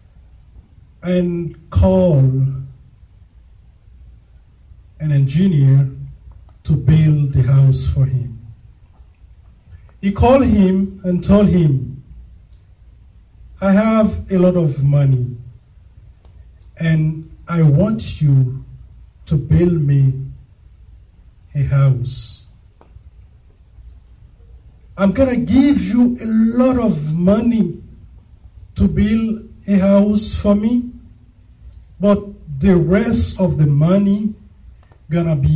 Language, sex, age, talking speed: English, male, 50-69, 90 wpm